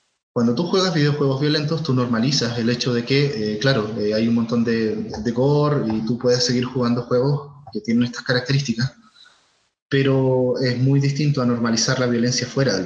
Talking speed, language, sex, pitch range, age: 190 wpm, Spanish, male, 120-140 Hz, 20-39